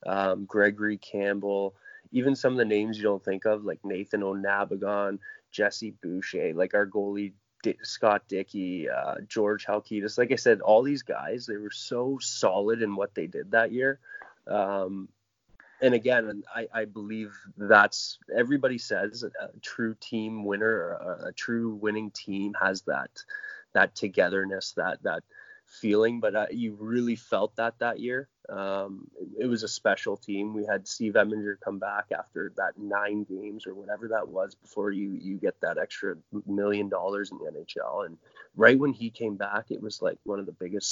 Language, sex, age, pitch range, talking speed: English, male, 20-39, 100-115 Hz, 175 wpm